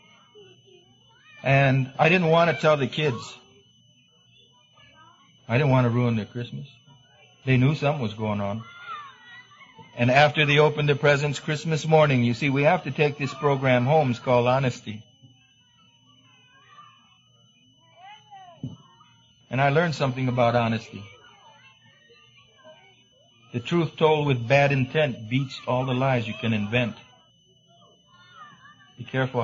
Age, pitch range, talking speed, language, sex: 50-69, 125-155 Hz, 125 wpm, English, male